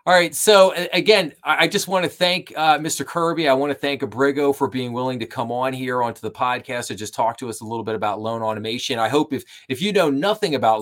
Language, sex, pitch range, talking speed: English, male, 105-140 Hz, 255 wpm